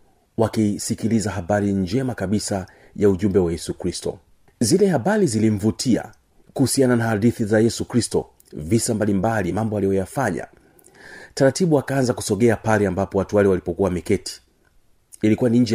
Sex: male